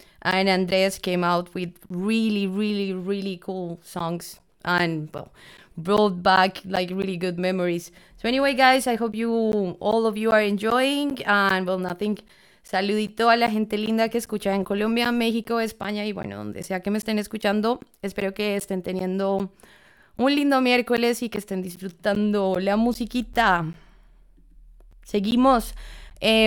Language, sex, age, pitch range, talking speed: English, female, 20-39, 195-225 Hz, 150 wpm